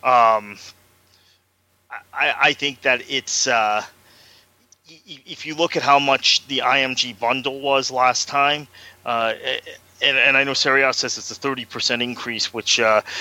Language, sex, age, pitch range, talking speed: English, male, 30-49, 115-135 Hz, 160 wpm